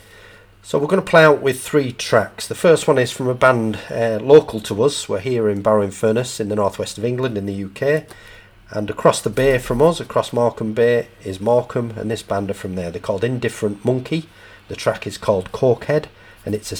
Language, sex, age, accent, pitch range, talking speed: English, male, 40-59, British, 100-120 Hz, 225 wpm